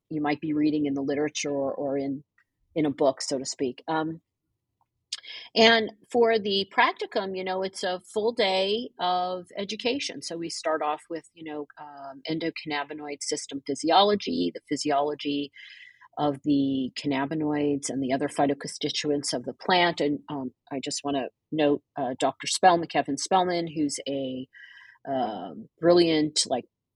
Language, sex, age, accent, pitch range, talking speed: English, female, 40-59, American, 145-190 Hz, 155 wpm